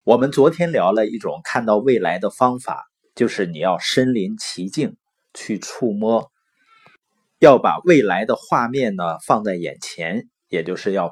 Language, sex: Chinese, male